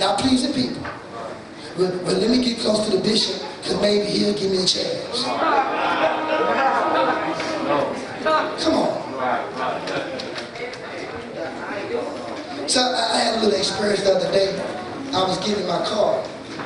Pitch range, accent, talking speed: 205-305 Hz, American, 125 wpm